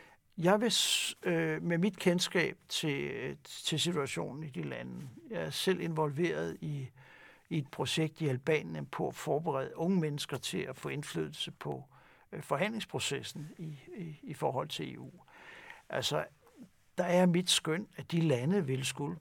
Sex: male